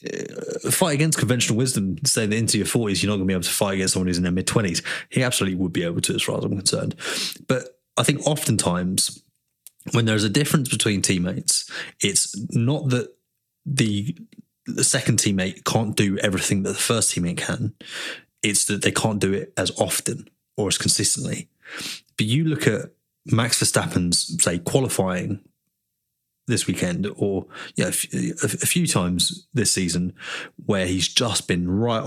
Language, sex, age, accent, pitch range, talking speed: English, male, 20-39, British, 95-130 Hz, 175 wpm